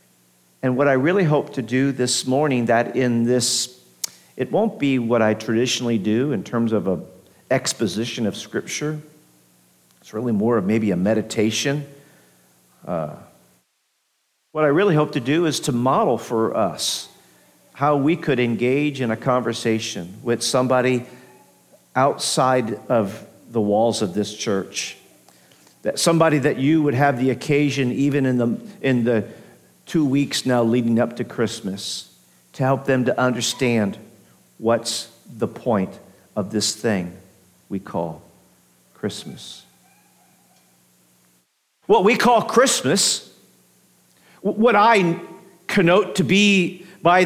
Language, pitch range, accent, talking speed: English, 105-165 Hz, American, 135 wpm